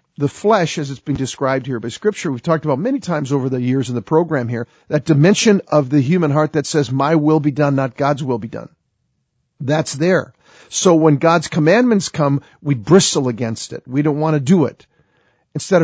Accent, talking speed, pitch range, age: American, 210 wpm, 140-170 Hz, 50-69